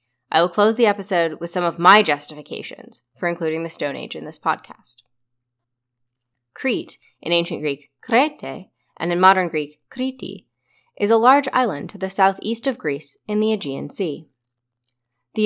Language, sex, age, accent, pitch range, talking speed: English, female, 20-39, American, 145-205 Hz, 165 wpm